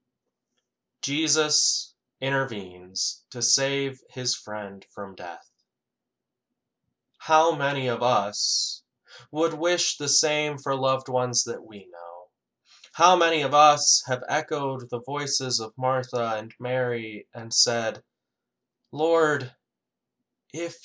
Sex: male